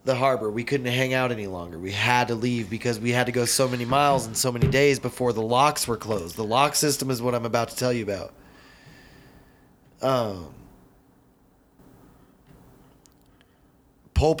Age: 20-39